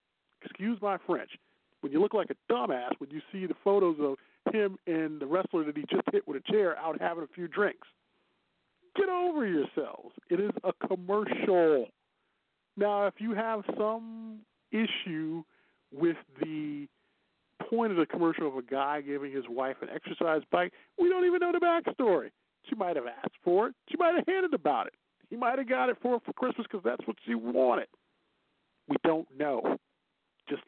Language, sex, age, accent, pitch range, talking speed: English, male, 50-69, American, 180-290 Hz, 185 wpm